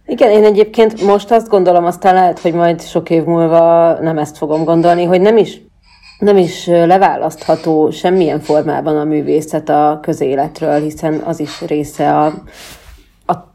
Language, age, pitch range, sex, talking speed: Hungarian, 30-49, 155-175 Hz, female, 155 wpm